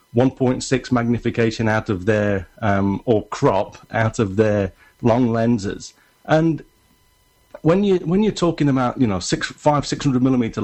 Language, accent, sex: English, British, male